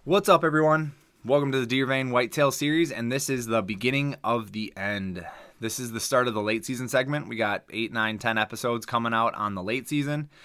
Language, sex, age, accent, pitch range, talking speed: English, male, 20-39, American, 105-125 Hz, 225 wpm